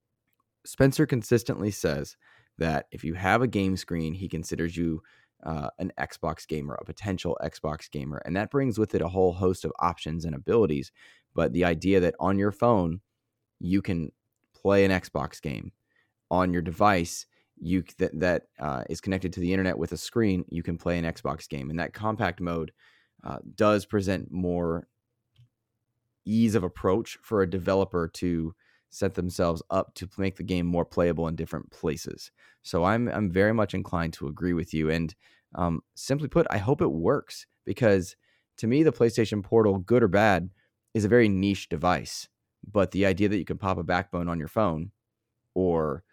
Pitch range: 85-110 Hz